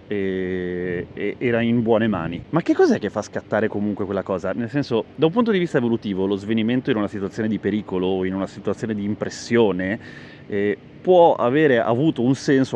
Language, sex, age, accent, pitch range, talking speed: Italian, male, 30-49, native, 105-145 Hz, 195 wpm